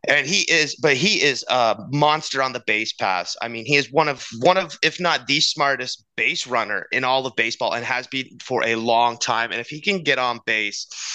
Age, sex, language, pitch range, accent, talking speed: 30-49, male, English, 115-145 Hz, American, 235 wpm